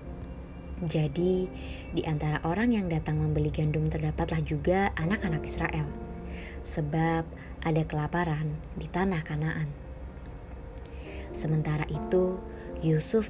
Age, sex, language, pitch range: 20-39, male, Indonesian, 115-170 Hz